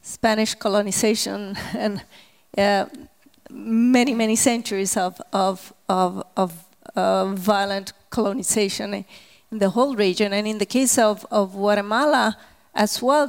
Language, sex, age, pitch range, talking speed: Finnish, female, 30-49, 205-235 Hz, 120 wpm